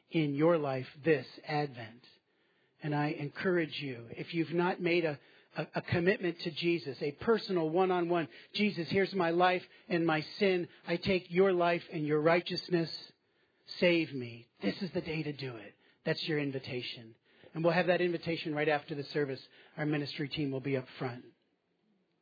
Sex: male